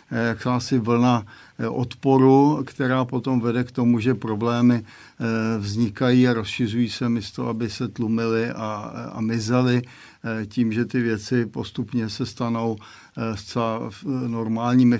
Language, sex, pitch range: Czech, male, 115-125 Hz